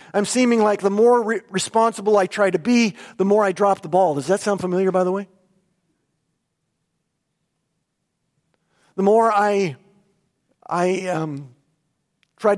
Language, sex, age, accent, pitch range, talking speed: English, male, 50-69, American, 145-190 Hz, 145 wpm